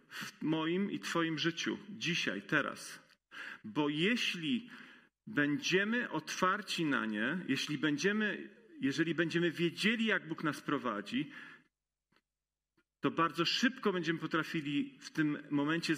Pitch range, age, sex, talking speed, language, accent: 150-195 Hz, 40-59, male, 105 wpm, Polish, native